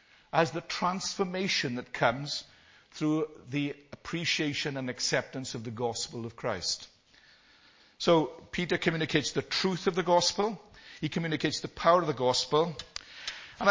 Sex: male